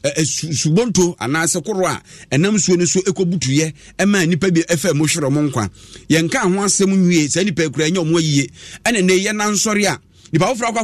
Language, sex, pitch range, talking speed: English, male, 155-200 Hz, 185 wpm